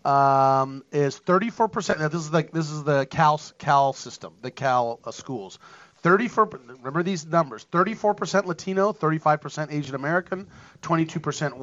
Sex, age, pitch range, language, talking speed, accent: male, 40-59, 145-180 Hz, English, 140 wpm, American